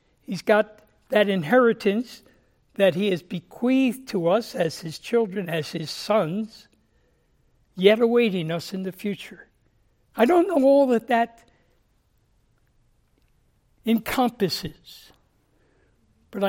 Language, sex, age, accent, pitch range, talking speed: English, male, 60-79, American, 180-255 Hz, 110 wpm